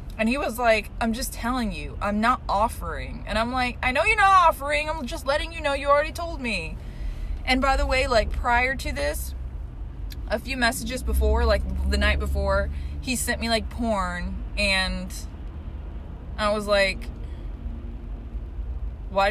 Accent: American